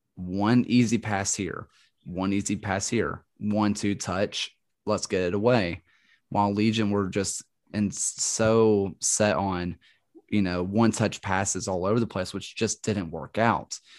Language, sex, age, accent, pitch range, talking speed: English, male, 30-49, American, 95-110 Hz, 150 wpm